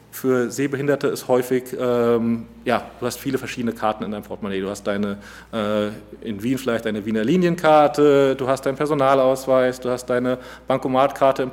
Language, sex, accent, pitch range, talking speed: German, male, German, 110-130 Hz, 170 wpm